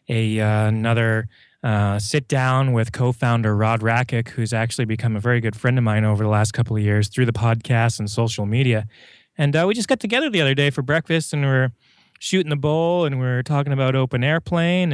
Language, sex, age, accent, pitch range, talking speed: English, male, 20-39, American, 115-150 Hz, 220 wpm